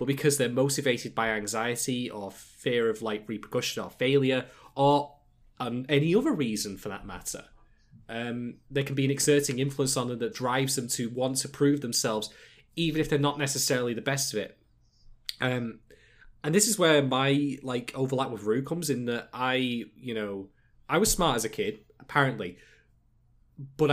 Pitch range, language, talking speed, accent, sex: 110-140 Hz, English, 180 wpm, British, male